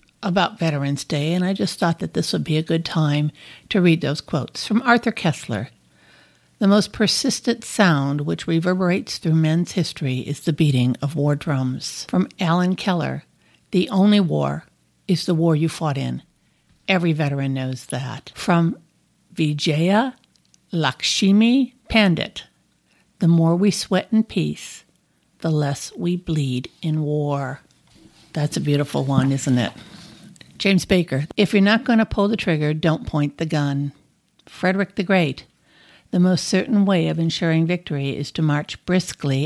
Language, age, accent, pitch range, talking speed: English, 60-79, American, 150-190 Hz, 155 wpm